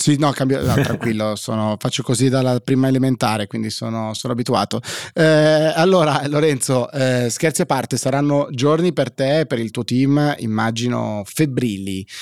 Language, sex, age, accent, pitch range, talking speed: Italian, male, 30-49, native, 115-140 Hz, 160 wpm